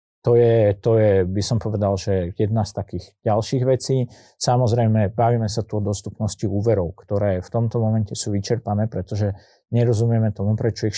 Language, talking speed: Slovak, 170 wpm